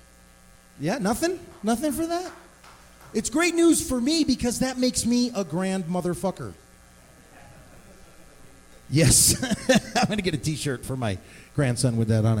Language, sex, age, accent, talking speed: English, male, 40-59, American, 140 wpm